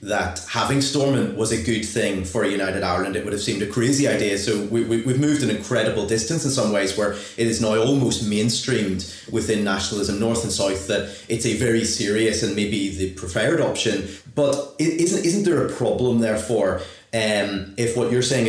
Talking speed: 200 wpm